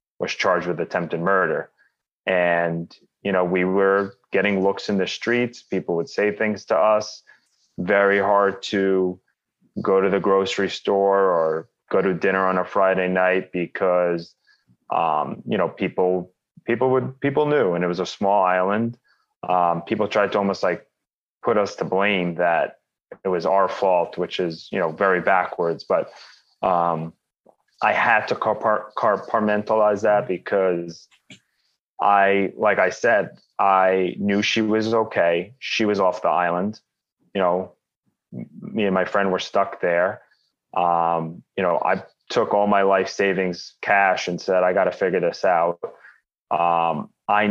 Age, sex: 30-49, male